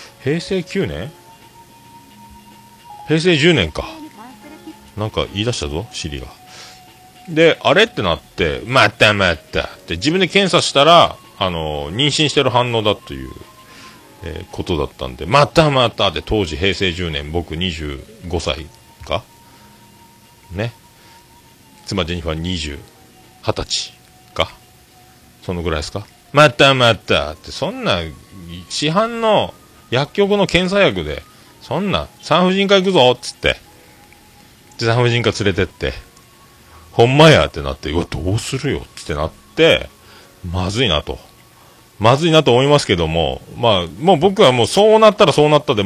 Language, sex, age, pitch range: Japanese, male, 40-59, 90-145 Hz